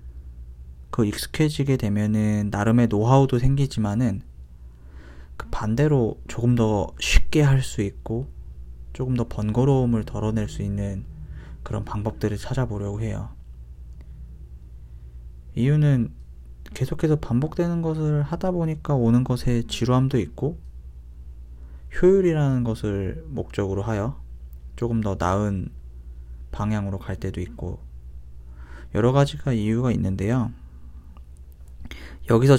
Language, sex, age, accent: Korean, male, 20-39, native